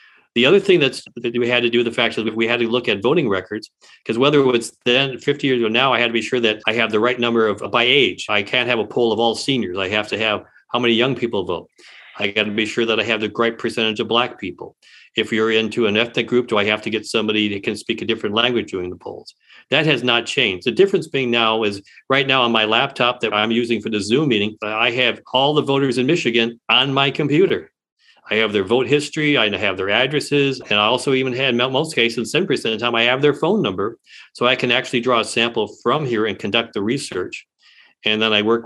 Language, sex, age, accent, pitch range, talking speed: English, male, 40-59, American, 110-130 Hz, 260 wpm